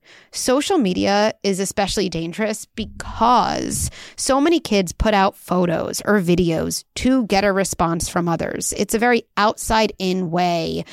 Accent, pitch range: American, 190-240 Hz